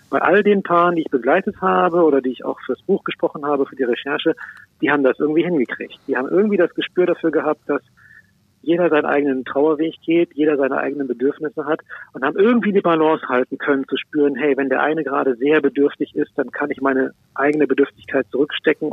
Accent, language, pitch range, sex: German, German, 130-160 Hz, male